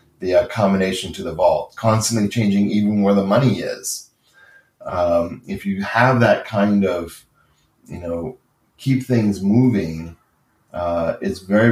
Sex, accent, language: male, American, English